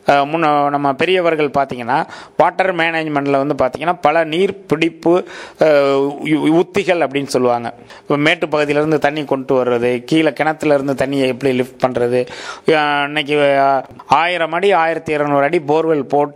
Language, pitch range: English, 140-180 Hz